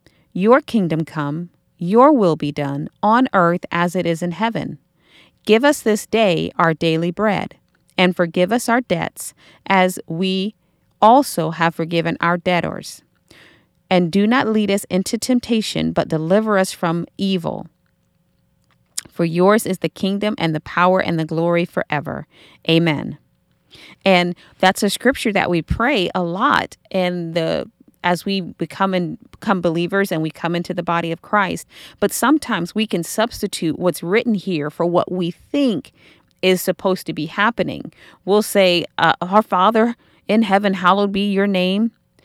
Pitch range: 170-210 Hz